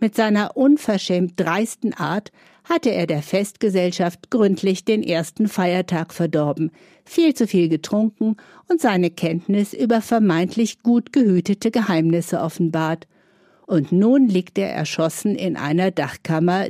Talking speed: 125 wpm